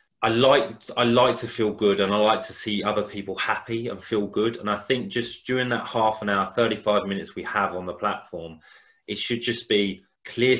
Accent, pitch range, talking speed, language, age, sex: British, 95-115 Hz, 215 wpm, English, 30-49, male